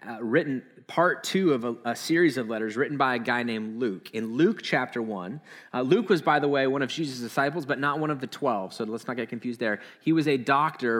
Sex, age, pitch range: male, 20-39, 120-145 Hz